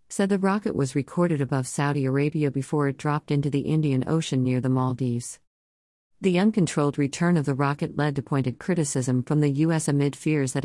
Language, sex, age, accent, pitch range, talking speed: English, female, 50-69, American, 130-160 Hz, 190 wpm